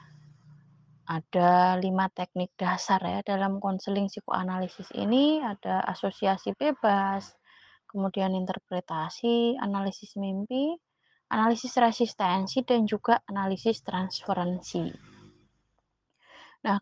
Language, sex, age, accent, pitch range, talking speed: Indonesian, female, 20-39, native, 190-235 Hz, 80 wpm